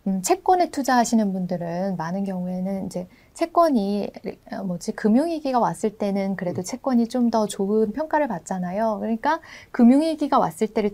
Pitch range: 200-260 Hz